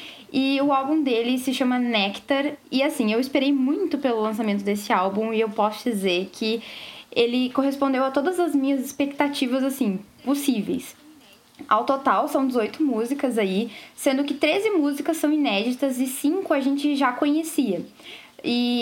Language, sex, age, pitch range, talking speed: Portuguese, female, 10-29, 225-285 Hz, 155 wpm